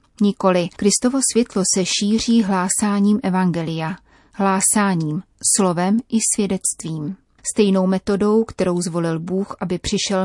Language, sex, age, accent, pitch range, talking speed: Czech, female, 30-49, native, 180-210 Hz, 105 wpm